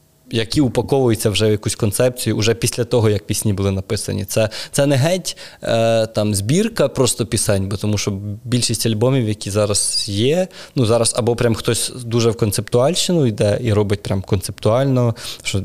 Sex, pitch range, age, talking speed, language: male, 105-125 Hz, 20-39, 170 wpm, Ukrainian